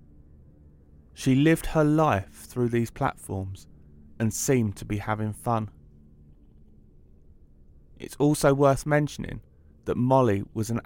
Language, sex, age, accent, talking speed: English, male, 30-49, British, 115 wpm